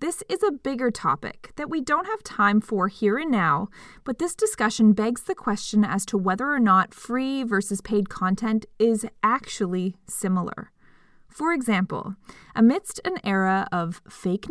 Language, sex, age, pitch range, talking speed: English, female, 20-39, 185-250 Hz, 160 wpm